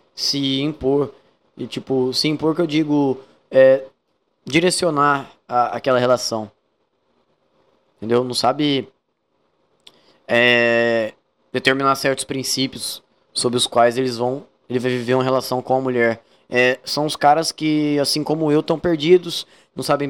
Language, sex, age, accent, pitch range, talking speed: Portuguese, male, 20-39, Brazilian, 130-160 Hz, 135 wpm